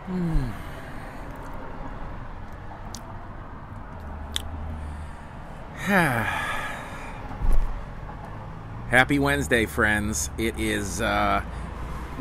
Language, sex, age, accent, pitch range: English, male, 40-59, American, 100-150 Hz